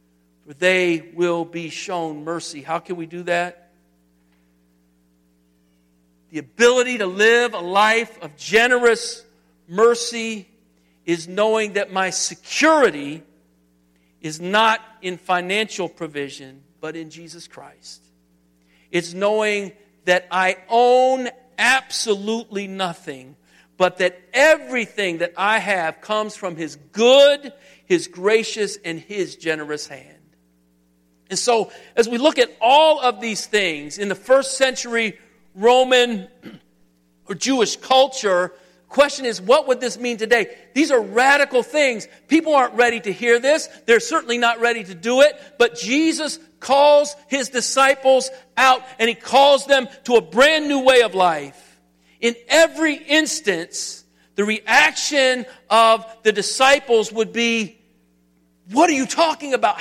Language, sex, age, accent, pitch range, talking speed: English, male, 50-69, American, 165-250 Hz, 130 wpm